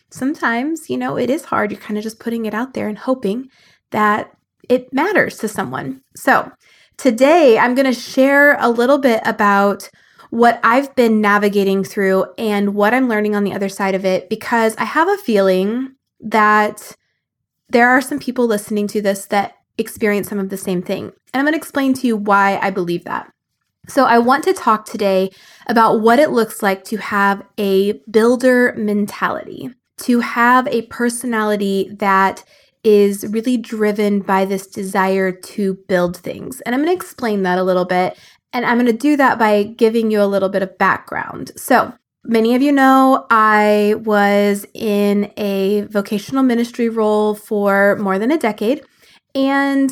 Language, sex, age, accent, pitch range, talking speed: English, female, 20-39, American, 200-245 Hz, 175 wpm